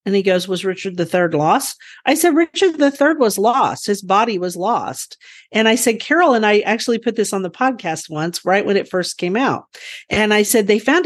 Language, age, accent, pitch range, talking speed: English, 50-69, American, 180-250 Hz, 235 wpm